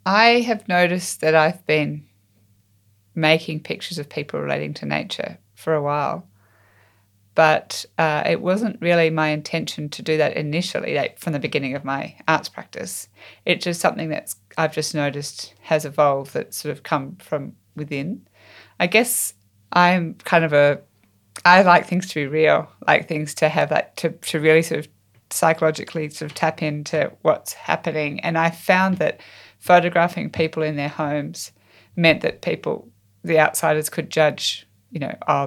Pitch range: 110-170 Hz